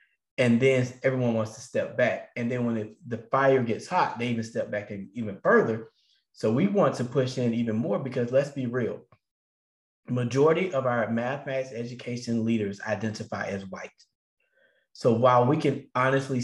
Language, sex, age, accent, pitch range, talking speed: English, male, 20-39, American, 115-130 Hz, 170 wpm